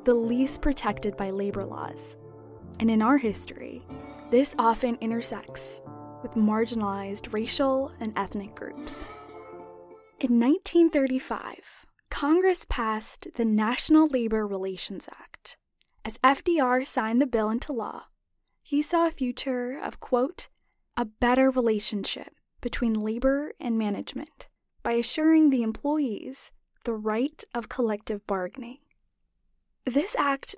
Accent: American